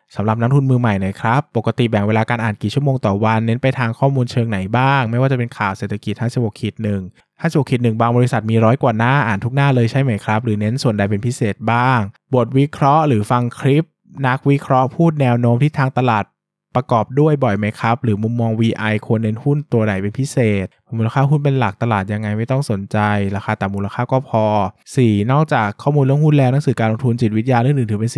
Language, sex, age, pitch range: Thai, male, 20-39, 105-135 Hz